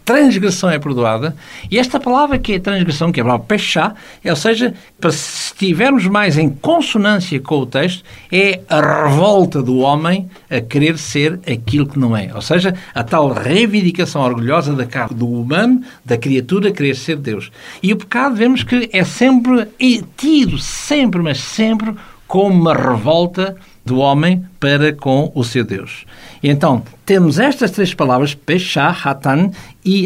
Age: 60-79